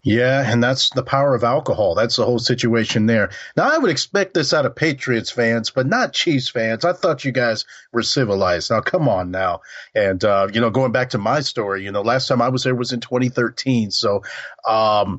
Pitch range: 110-125 Hz